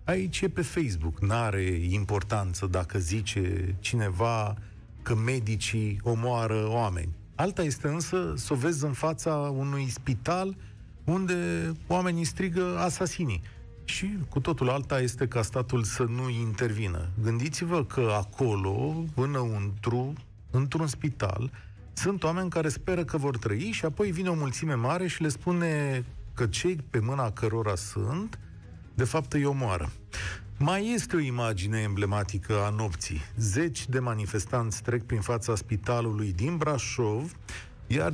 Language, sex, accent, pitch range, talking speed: Romanian, male, native, 105-150 Hz, 135 wpm